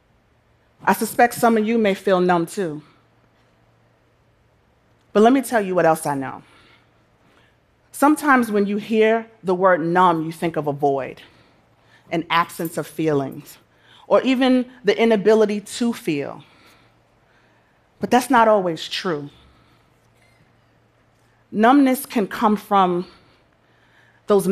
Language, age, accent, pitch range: Korean, 30-49, American, 165-220 Hz